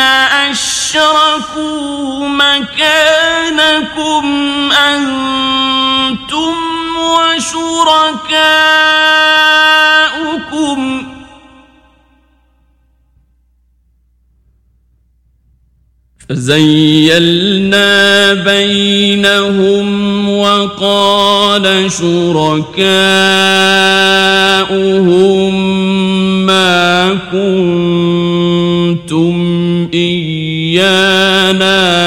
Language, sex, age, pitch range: Persian, male, 40-59, 175-205 Hz